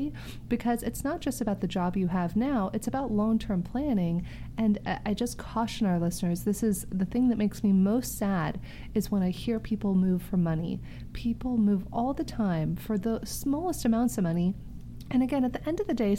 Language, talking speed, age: English, 210 wpm, 30-49